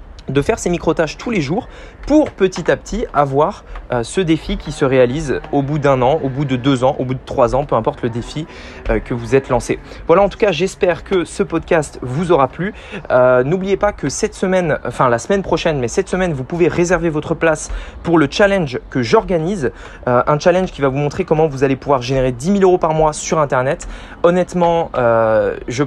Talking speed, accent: 225 wpm, French